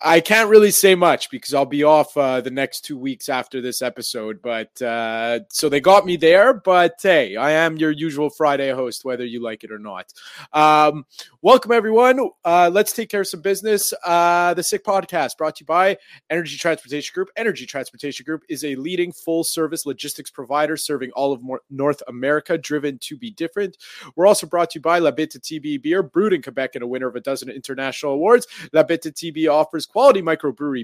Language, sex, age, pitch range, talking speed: English, male, 30-49, 140-185 Hz, 200 wpm